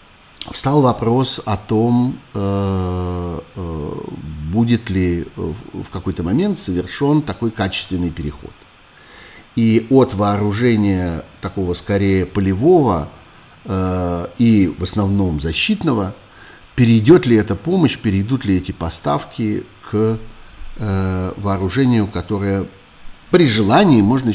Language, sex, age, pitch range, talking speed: Russian, male, 50-69, 90-115 Hz, 90 wpm